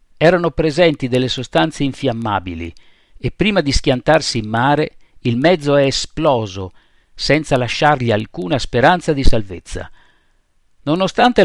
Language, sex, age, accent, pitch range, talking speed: Italian, male, 50-69, native, 105-155 Hz, 115 wpm